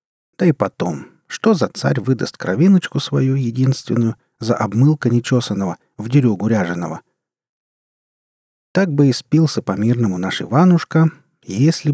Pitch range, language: 105-140 Hz, Russian